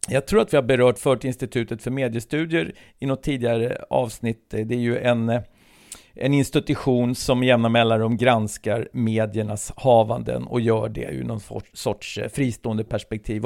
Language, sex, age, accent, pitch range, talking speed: English, male, 50-69, Swedish, 115-140 Hz, 155 wpm